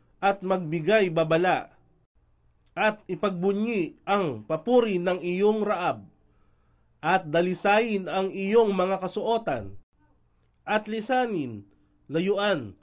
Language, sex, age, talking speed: Filipino, male, 30-49, 90 wpm